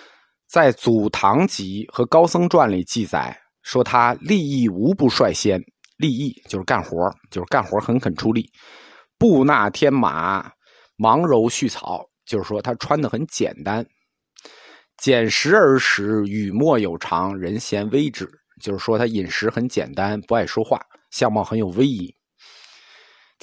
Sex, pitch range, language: male, 105-130 Hz, Chinese